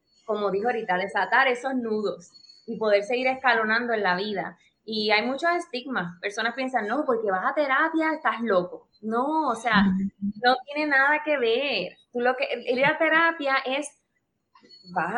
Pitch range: 205-270 Hz